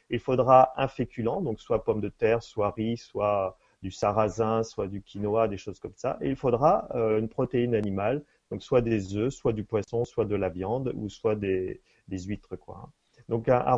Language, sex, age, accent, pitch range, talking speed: French, male, 30-49, French, 115-145 Hz, 205 wpm